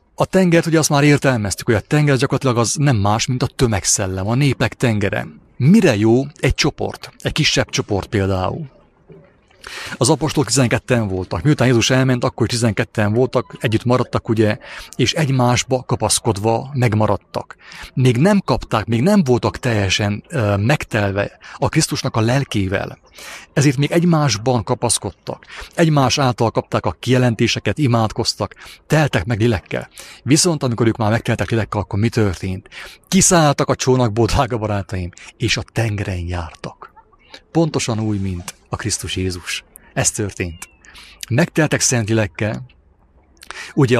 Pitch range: 105-140 Hz